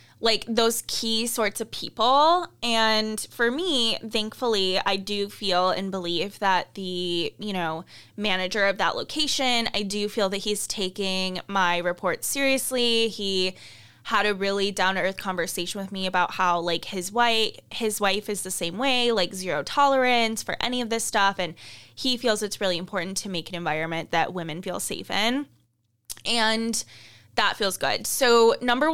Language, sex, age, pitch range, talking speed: English, female, 10-29, 180-230 Hz, 165 wpm